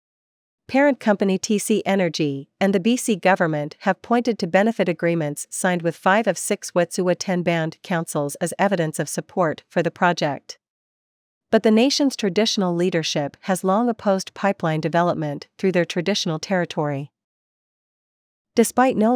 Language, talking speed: English, 140 wpm